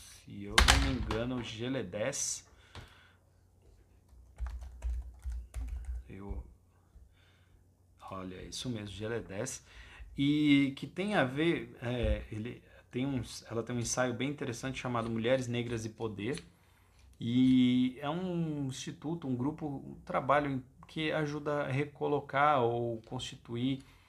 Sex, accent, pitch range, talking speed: male, Brazilian, 100-135 Hz, 100 wpm